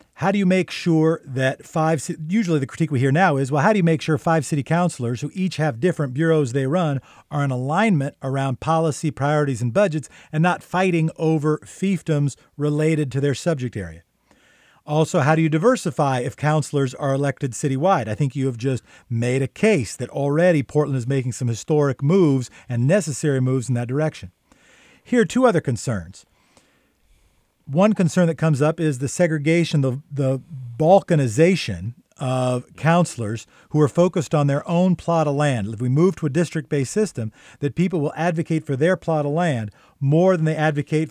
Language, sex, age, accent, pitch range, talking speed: English, male, 40-59, American, 135-165 Hz, 185 wpm